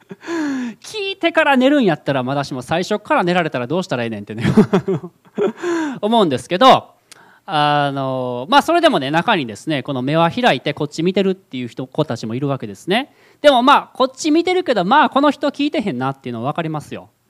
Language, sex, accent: Japanese, male, native